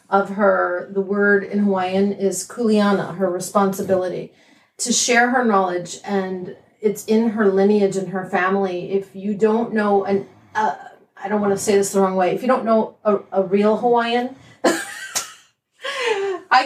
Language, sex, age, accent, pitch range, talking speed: English, female, 40-59, American, 185-215 Hz, 165 wpm